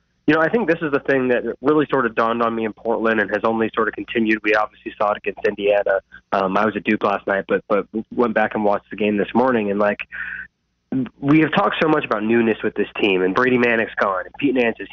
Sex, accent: male, American